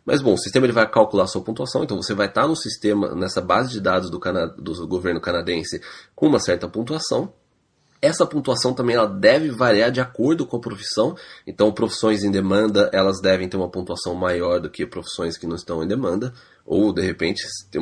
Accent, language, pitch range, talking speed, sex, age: Brazilian, Portuguese, 90-120 Hz, 210 wpm, male, 20-39